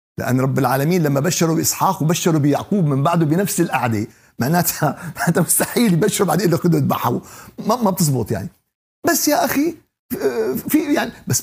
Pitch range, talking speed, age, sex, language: 115-185 Hz, 150 wpm, 50-69, male, Arabic